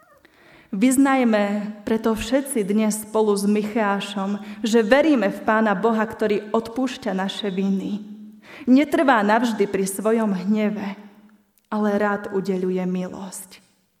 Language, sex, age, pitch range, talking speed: Slovak, female, 20-39, 200-230 Hz, 105 wpm